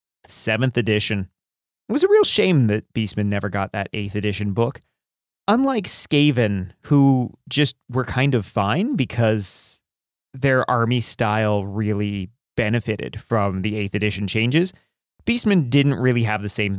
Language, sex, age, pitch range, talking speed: English, male, 30-49, 105-135 Hz, 145 wpm